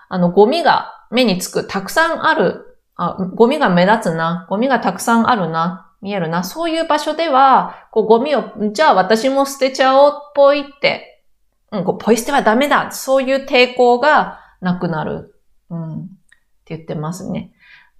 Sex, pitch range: female, 175-245 Hz